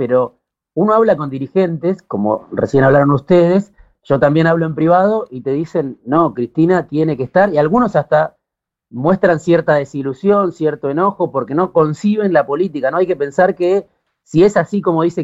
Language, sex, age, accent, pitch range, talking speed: Spanish, male, 40-59, Argentinian, 140-180 Hz, 175 wpm